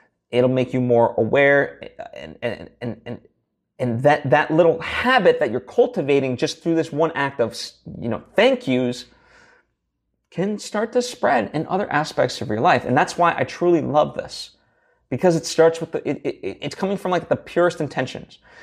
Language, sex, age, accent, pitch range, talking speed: English, male, 30-49, American, 120-165 Hz, 185 wpm